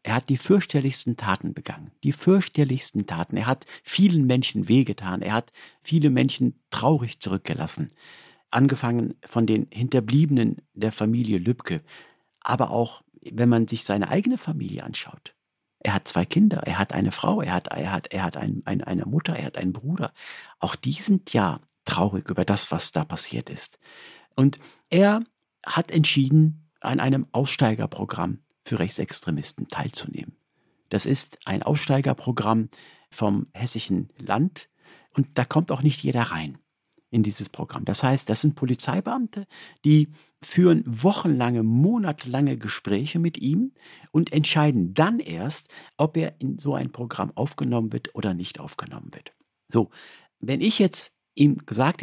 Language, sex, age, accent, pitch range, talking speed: German, male, 50-69, German, 115-160 Hz, 150 wpm